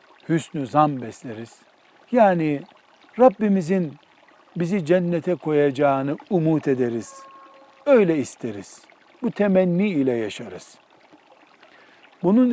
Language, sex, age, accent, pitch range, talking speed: Turkish, male, 60-79, native, 145-210 Hz, 80 wpm